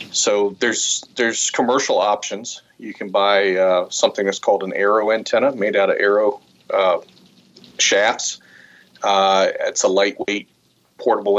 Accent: American